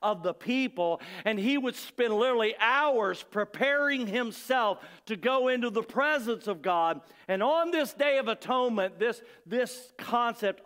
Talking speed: 150 wpm